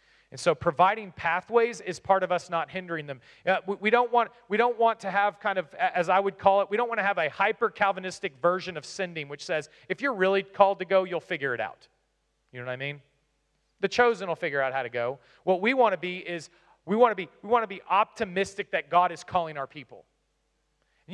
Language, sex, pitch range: English, male, 135-195 Hz